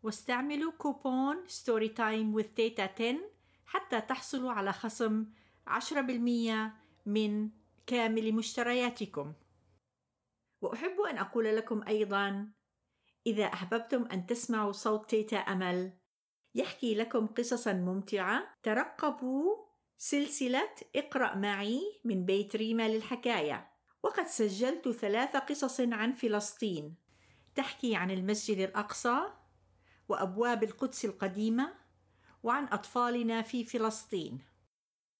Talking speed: 95 wpm